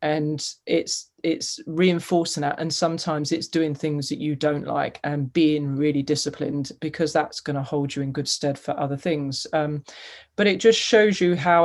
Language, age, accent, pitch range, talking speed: English, 30-49, British, 145-165 Hz, 190 wpm